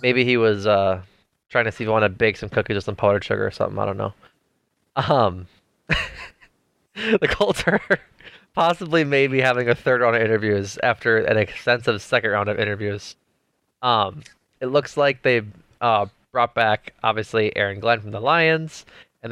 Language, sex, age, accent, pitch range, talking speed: English, male, 20-39, American, 105-125 Hz, 175 wpm